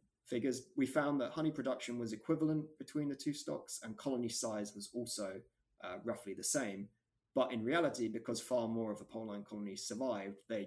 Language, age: English, 20-39